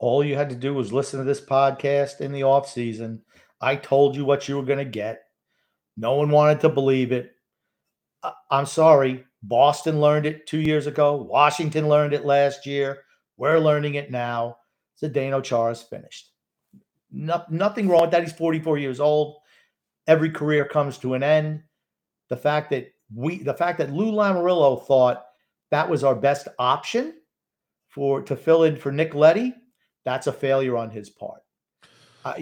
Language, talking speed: English, 170 wpm